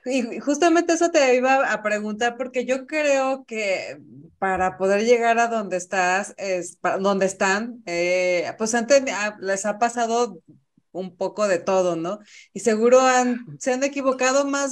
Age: 30-49